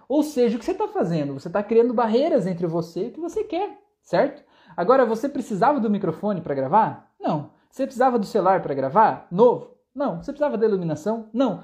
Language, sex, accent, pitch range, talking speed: Portuguese, male, Brazilian, 170-245 Hz, 205 wpm